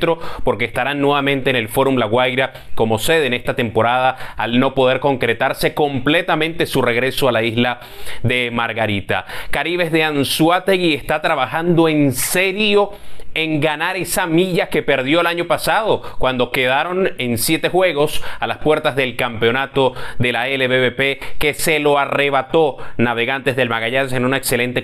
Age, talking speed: 30-49, 155 wpm